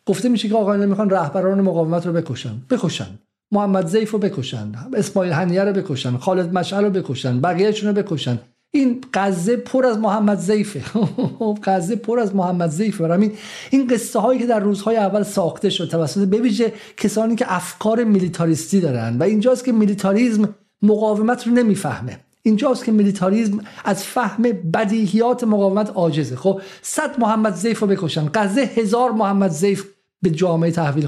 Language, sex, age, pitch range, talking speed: Persian, male, 50-69, 170-230 Hz, 160 wpm